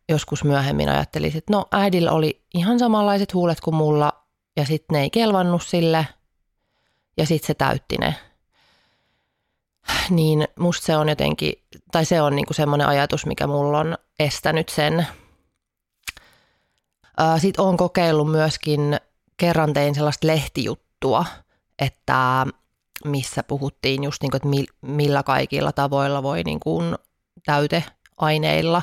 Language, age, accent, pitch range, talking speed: Finnish, 30-49, native, 135-160 Hz, 125 wpm